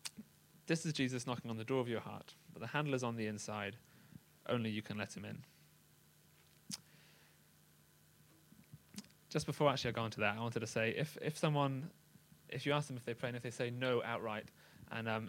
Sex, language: male, English